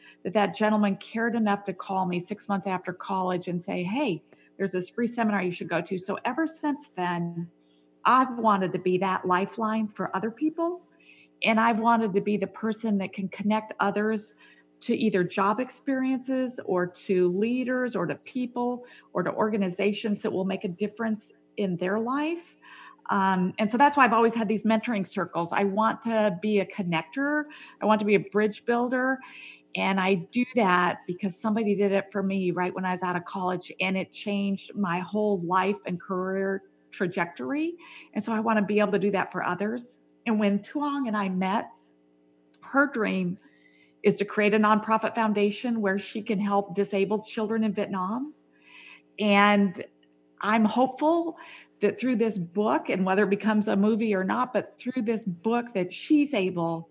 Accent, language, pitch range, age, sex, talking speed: American, English, 185-225 Hz, 40-59, female, 185 wpm